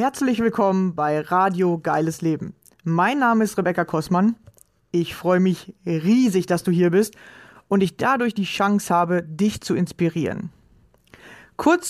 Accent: German